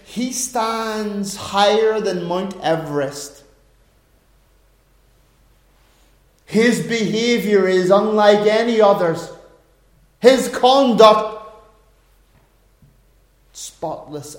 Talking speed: 65 wpm